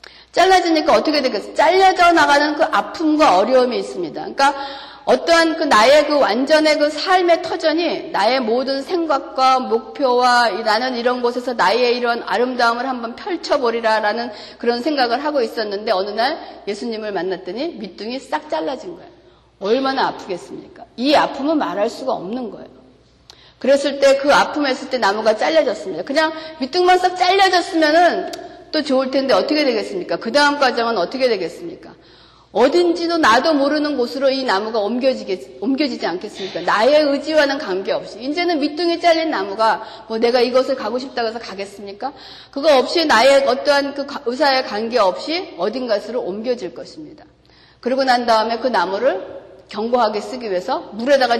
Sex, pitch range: female, 230-310 Hz